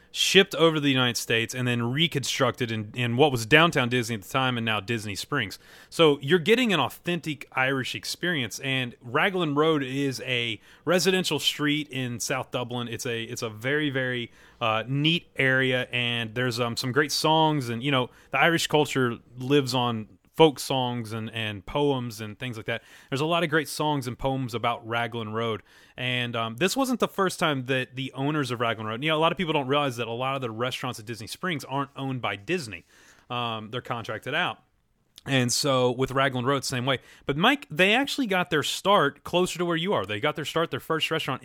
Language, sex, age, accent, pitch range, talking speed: English, male, 30-49, American, 115-150 Hz, 210 wpm